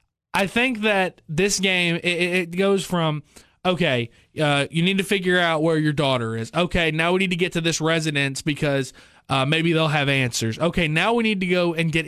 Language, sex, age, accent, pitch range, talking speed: English, male, 20-39, American, 135-175 Hz, 215 wpm